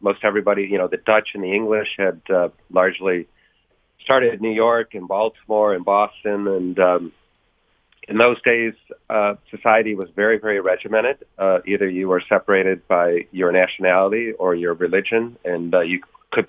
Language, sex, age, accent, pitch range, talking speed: English, male, 40-59, American, 95-110 Hz, 165 wpm